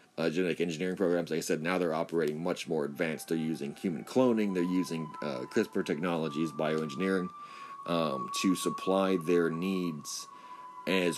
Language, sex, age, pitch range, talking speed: English, male, 30-49, 85-110 Hz, 155 wpm